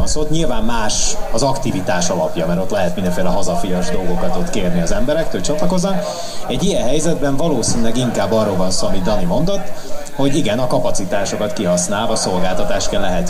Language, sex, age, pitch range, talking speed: Hungarian, male, 30-49, 90-140 Hz, 165 wpm